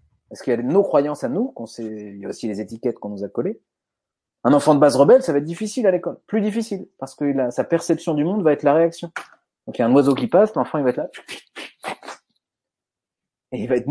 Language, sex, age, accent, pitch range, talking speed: French, male, 30-49, French, 135-200 Hz, 270 wpm